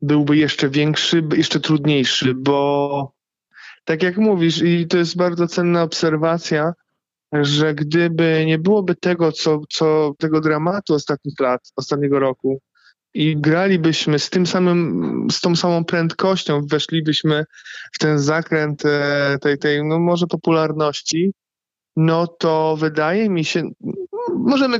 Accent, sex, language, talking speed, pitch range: native, male, Polish, 125 wpm, 150-190 Hz